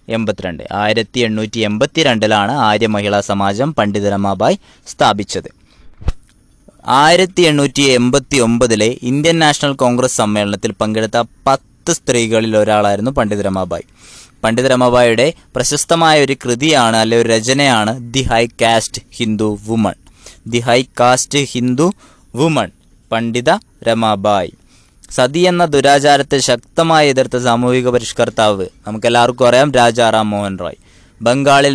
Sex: male